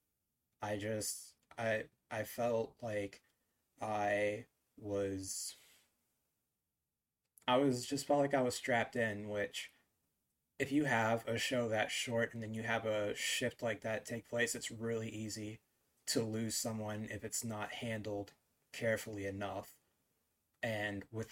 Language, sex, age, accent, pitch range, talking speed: English, male, 20-39, American, 105-115 Hz, 140 wpm